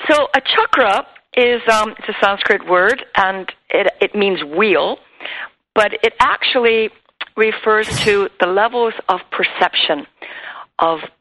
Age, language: 50-69, English